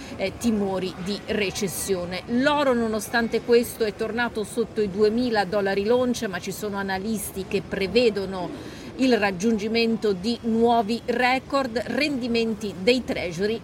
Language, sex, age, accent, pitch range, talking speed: Italian, female, 40-59, native, 200-240 Hz, 125 wpm